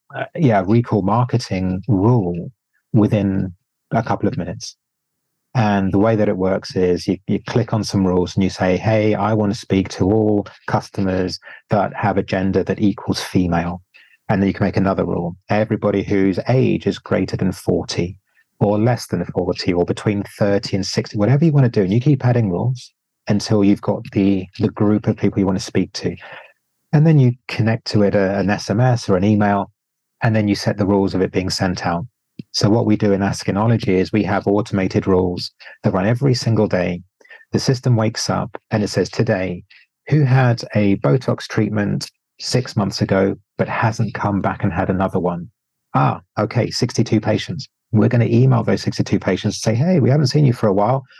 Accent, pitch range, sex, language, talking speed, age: British, 95-115 Hz, male, English, 200 wpm, 30-49